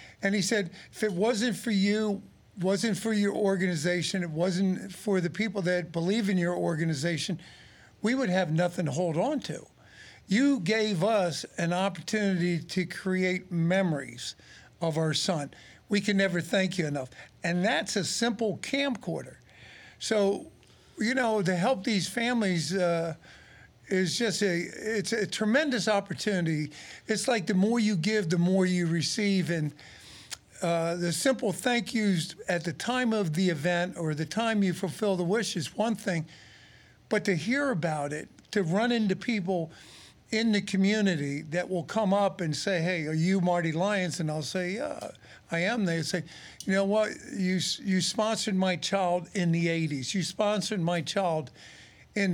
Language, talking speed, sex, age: English, 165 wpm, male, 50-69